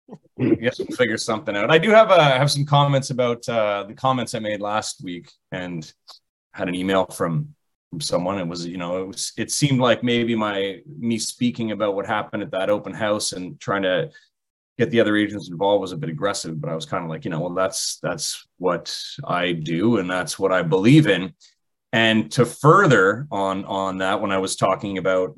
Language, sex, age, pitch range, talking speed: English, male, 30-49, 95-125 Hz, 215 wpm